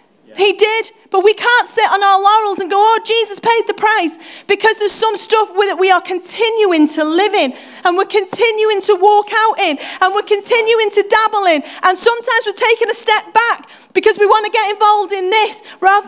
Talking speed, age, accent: 210 wpm, 30-49, British